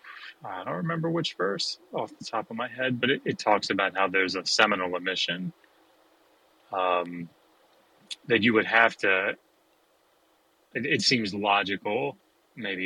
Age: 30-49